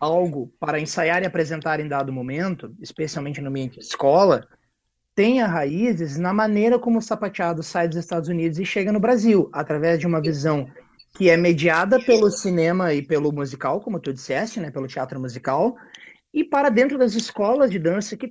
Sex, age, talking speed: male, 30-49, 180 wpm